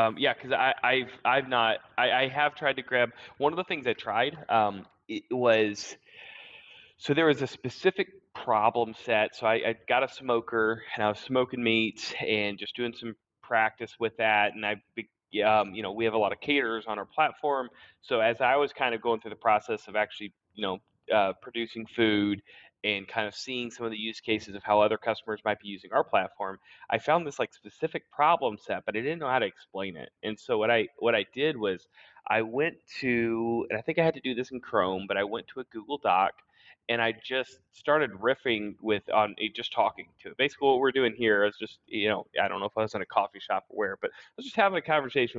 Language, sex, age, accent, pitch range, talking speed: English, male, 20-39, American, 105-130 Hz, 240 wpm